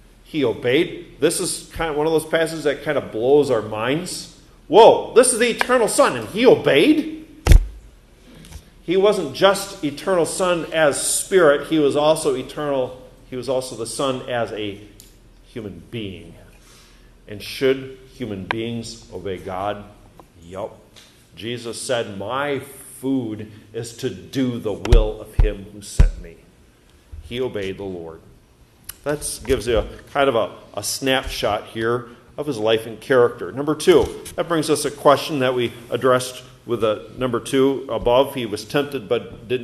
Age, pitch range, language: 50-69, 110-160 Hz, English